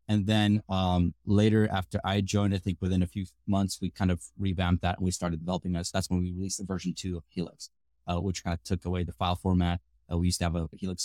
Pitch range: 85-100 Hz